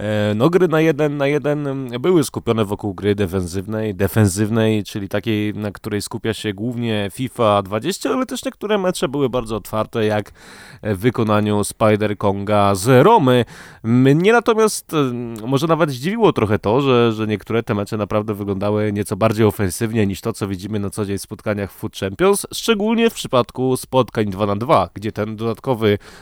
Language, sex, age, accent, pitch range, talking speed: Polish, male, 20-39, native, 105-130 Hz, 165 wpm